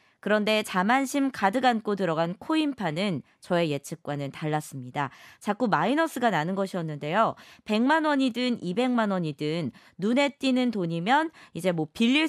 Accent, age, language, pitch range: native, 20-39, Korean, 175-275 Hz